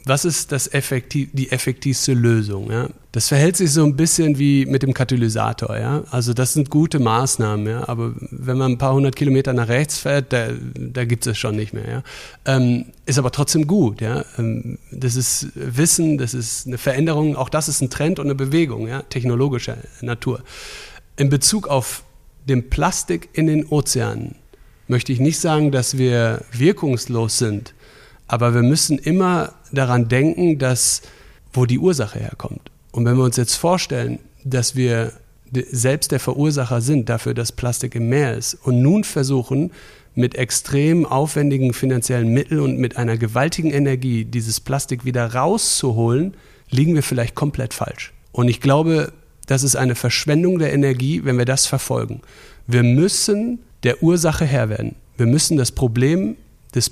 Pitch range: 120-145 Hz